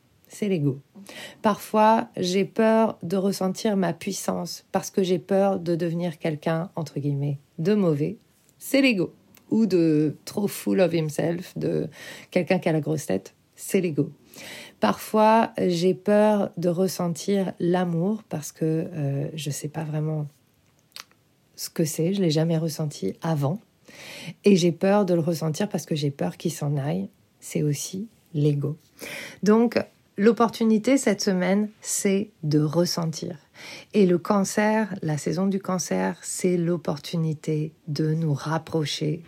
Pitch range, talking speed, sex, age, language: 160-195 Hz, 145 wpm, female, 40-59, French